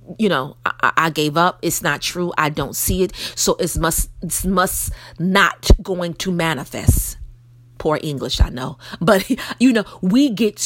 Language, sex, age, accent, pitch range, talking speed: English, female, 40-59, American, 155-215 Hz, 175 wpm